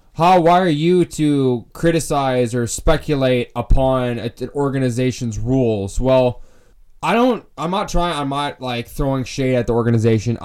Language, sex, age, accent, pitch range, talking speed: English, male, 20-39, American, 120-175 Hz, 150 wpm